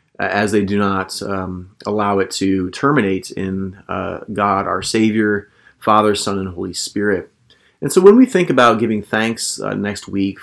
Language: English